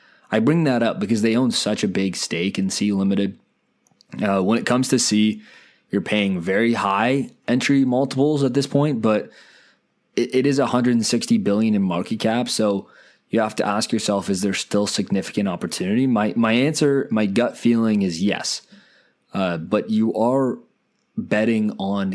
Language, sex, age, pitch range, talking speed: English, male, 20-39, 100-135 Hz, 170 wpm